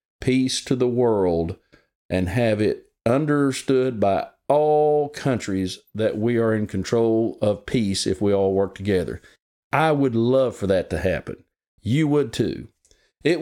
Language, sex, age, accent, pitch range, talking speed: English, male, 50-69, American, 110-155 Hz, 150 wpm